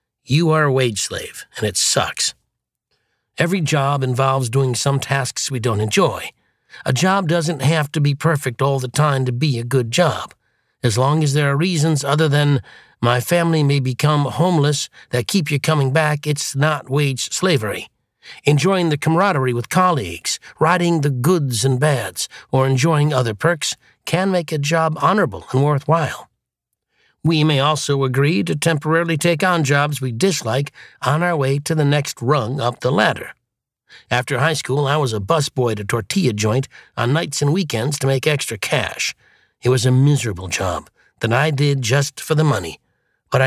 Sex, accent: male, American